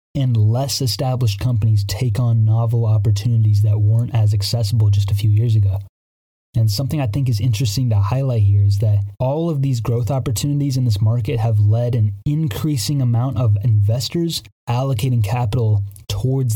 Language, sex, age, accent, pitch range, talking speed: English, male, 20-39, American, 105-125 Hz, 165 wpm